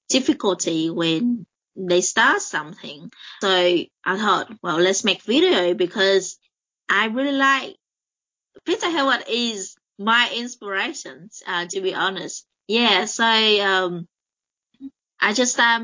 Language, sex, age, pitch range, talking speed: English, female, 20-39, 170-235 Hz, 115 wpm